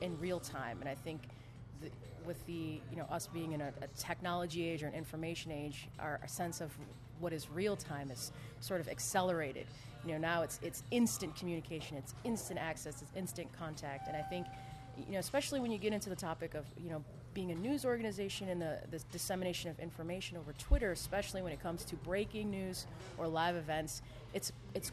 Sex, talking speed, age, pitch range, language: female, 205 wpm, 30-49, 150-190 Hz, English